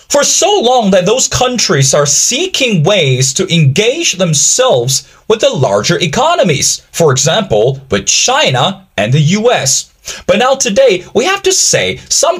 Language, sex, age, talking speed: English, male, 20-39, 150 wpm